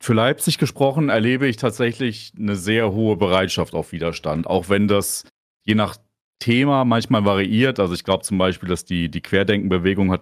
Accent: German